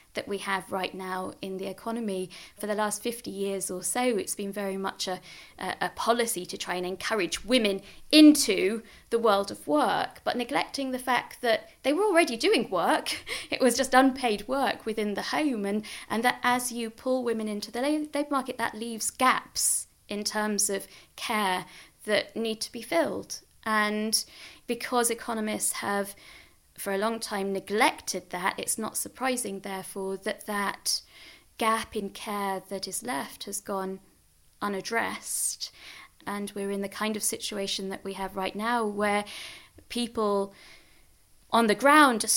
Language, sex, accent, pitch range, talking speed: English, female, British, 195-240 Hz, 165 wpm